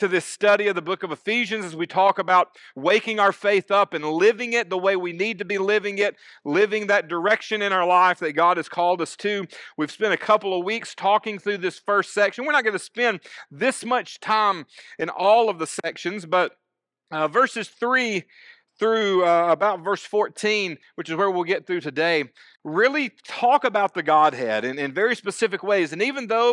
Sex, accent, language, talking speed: male, American, English, 205 wpm